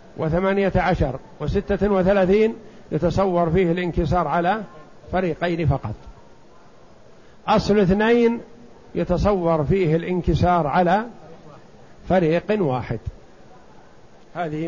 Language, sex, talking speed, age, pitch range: Arabic, male, 80 wpm, 50-69, 155-190 Hz